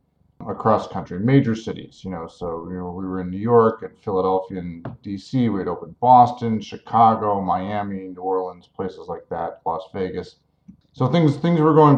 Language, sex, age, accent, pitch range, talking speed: English, male, 40-59, American, 100-120 Hz, 180 wpm